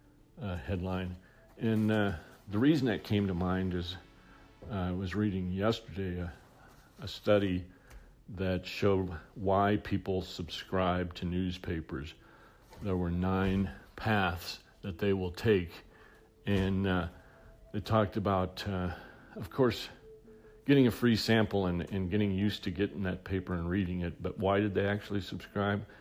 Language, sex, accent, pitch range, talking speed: English, male, American, 90-105 Hz, 145 wpm